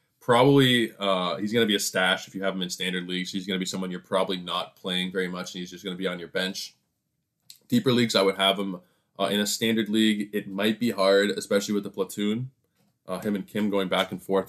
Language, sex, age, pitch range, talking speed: English, male, 20-39, 90-105 Hz, 255 wpm